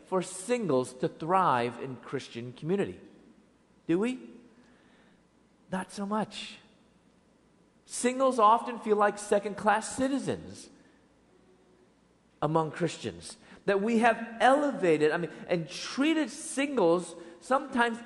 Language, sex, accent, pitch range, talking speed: English, male, American, 180-255 Hz, 105 wpm